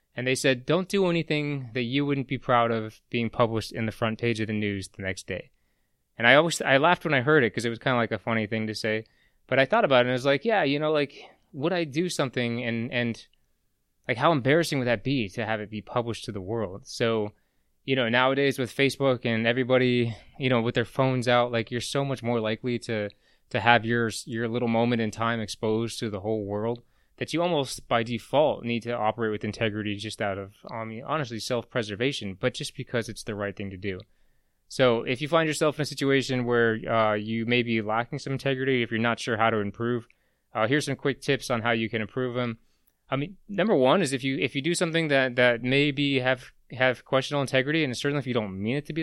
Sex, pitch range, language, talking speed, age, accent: male, 115-140 Hz, English, 245 wpm, 20-39, American